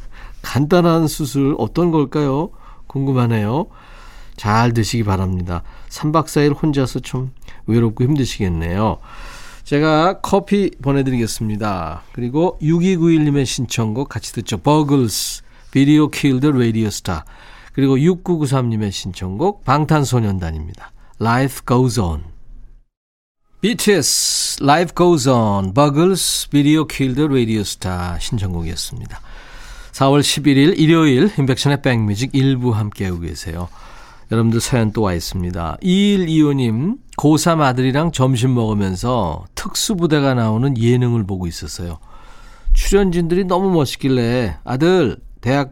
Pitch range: 110-150 Hz